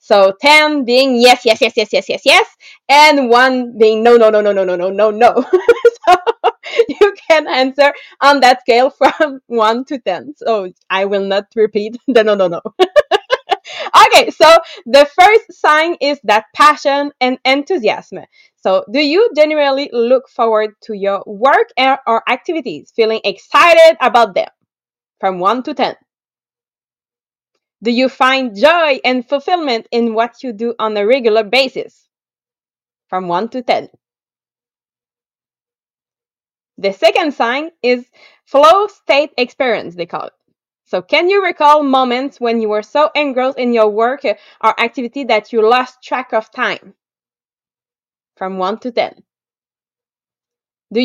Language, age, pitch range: English, 20-39, 225-300 Hz